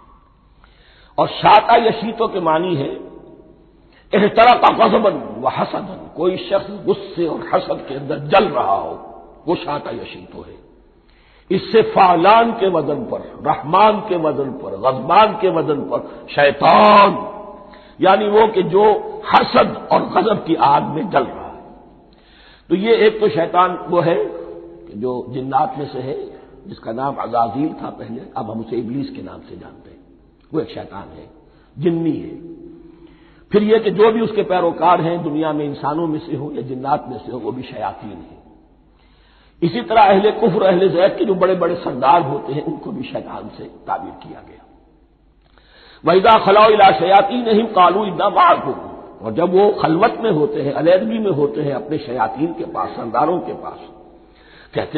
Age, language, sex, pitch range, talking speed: 60-79, Hindi, male, 160-225 Hz, 170 wpm